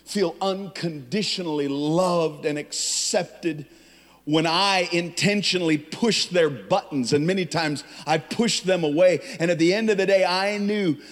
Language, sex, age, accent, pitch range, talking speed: English, male, 40-59, American, 130-195 Hz, 145 wpm